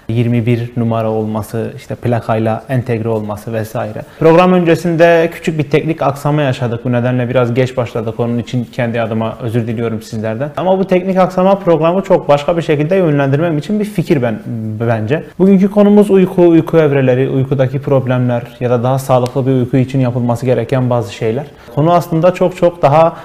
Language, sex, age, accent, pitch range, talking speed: Turkish, male, 30-49, native, 125-165 Hz, 170 wpm